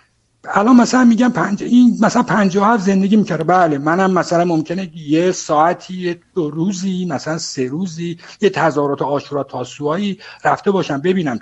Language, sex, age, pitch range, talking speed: Persian, male, 60-79, 130-205 Hz, 145 wpm